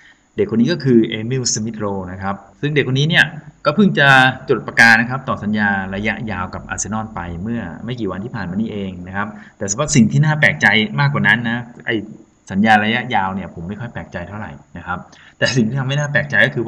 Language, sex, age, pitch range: Thai, male, 20-39, 100-130 Hz